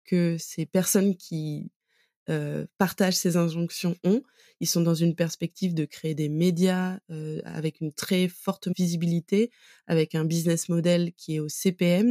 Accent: French